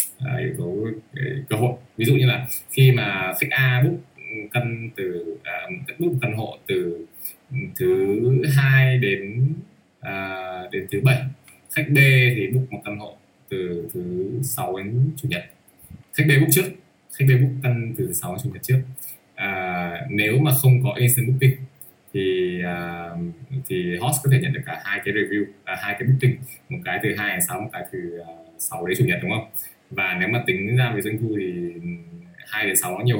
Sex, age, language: male, 20-39, English